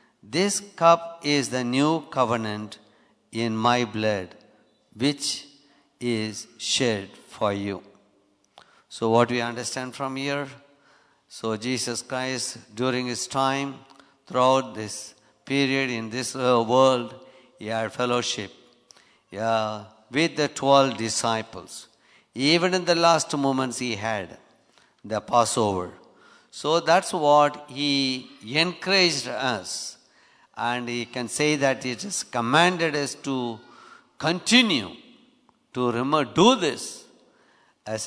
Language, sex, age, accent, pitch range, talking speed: English, male, 60-79, Indian, 115-145 Hz, 110 wpm